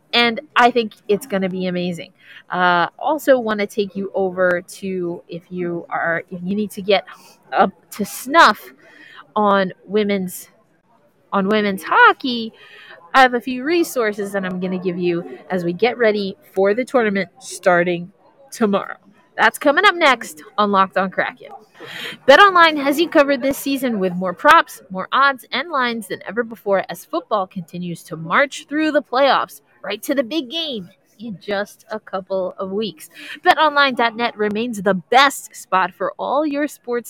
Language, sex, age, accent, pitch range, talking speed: English, female, 30-49, American, 190-280 Hz, 170 wpm